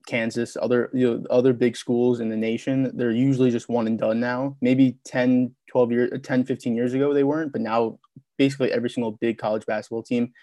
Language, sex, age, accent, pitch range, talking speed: English, male, 20-39, American, 115-130 Hz, 205 wpm